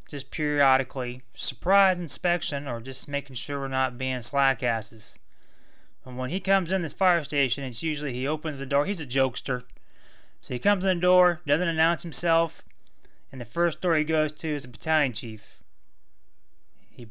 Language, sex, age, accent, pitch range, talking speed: English, male, 20-39, American, 135-185 Hz, 175 wpm